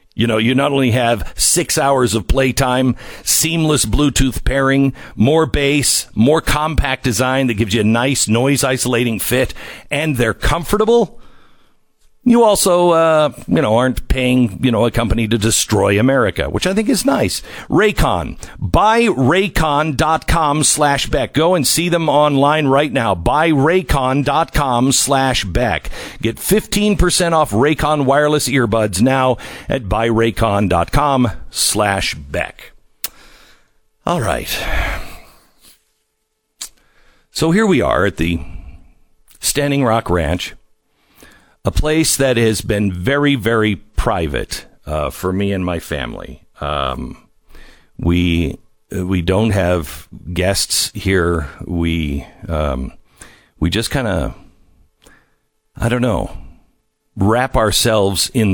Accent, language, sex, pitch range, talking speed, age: American, English, male, 95-140 Hz, 130 wpm, 50-69